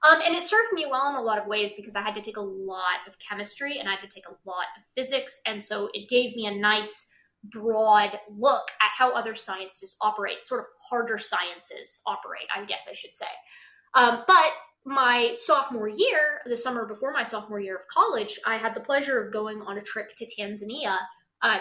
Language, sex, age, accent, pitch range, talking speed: English, female, 20-39, American, 200-275 Hz, 215 wpm